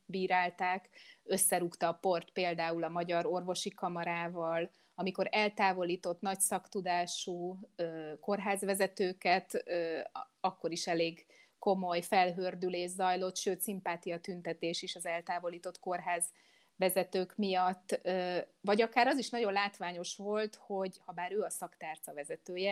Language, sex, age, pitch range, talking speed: English, female, 30-49, 170-195 Hz, 115 wpm